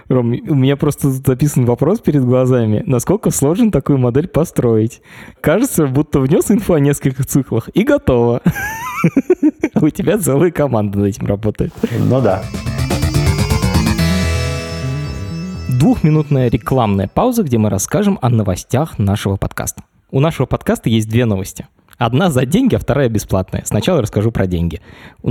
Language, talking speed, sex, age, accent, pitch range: Russian, 140 wpm, male, 20-39, native, 105-155 Hz